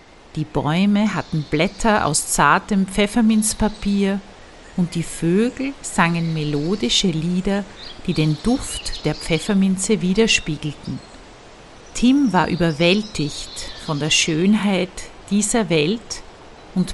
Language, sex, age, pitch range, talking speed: German, female, 50-69, 160-215 Hz, 100 wpm